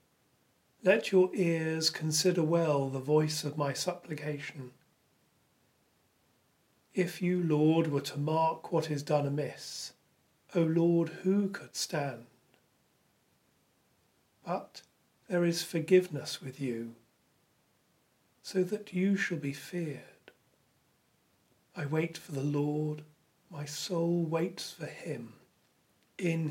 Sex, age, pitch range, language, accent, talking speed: male, 40-59, 145-170 Hz, English, British, 110 wpm